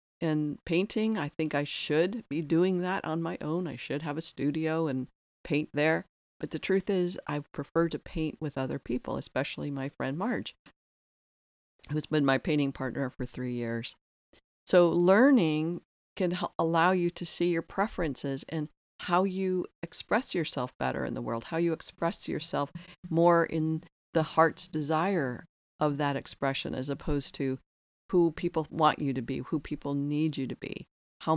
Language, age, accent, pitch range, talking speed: English, 50-69, American, 140-165 Hz, 170 wpm